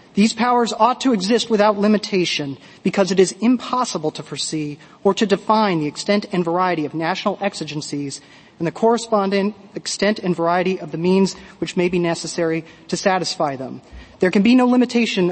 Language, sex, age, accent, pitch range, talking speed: English, male, 30-49, American, 170-205 Hz, 170 wpm